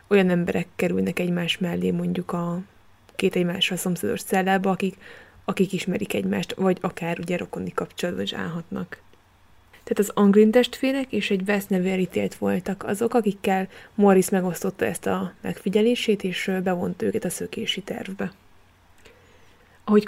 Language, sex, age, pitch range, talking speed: Hungarian, female, 20-39, 180-220 Hz, 130 wpm